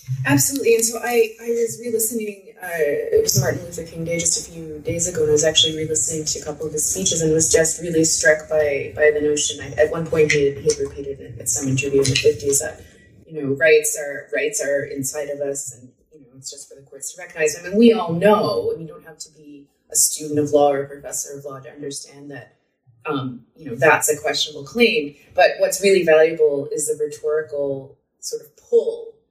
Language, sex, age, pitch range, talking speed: English, female, 20-39, 145-210 Hz, 230 wpm